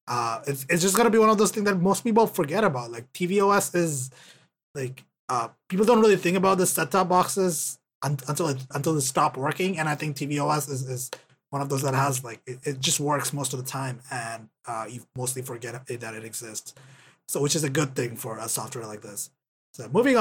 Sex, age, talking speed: male, 20-39, 235 wpm